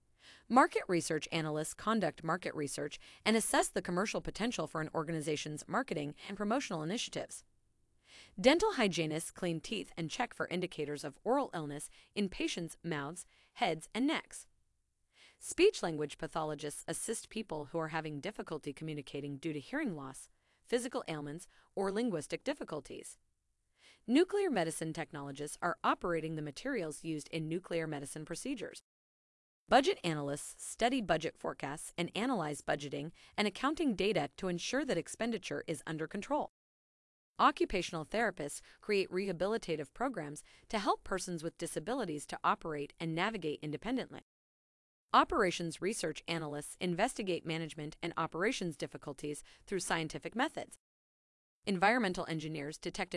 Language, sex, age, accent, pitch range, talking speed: English, female, 30-49, American, 155-220 Hz, 125 wpm